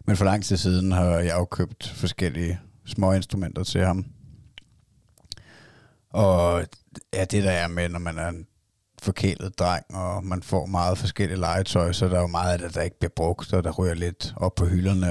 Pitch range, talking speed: 90-110 Hz, 200 wpm